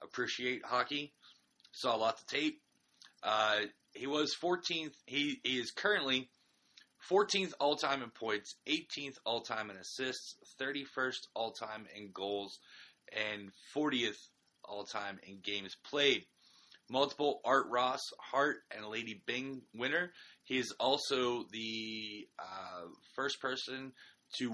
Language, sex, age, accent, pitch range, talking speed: English, male, 30-49, American, 105-135 Hz, 120 wpm